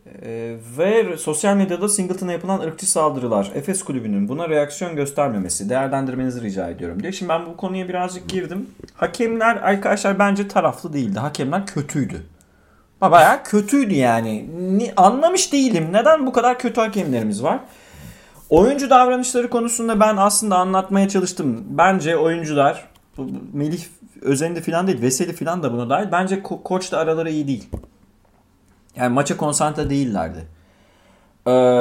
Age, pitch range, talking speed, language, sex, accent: 30-49, 125-200 Hz, 140 wpm, Turkish, male, native